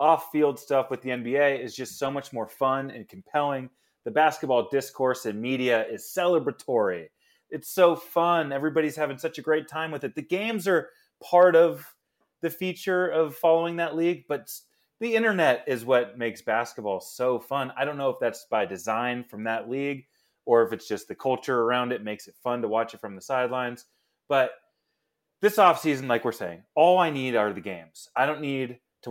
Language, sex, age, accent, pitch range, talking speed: English, male, 30-49, American, 115-160 Hz, 195 wpm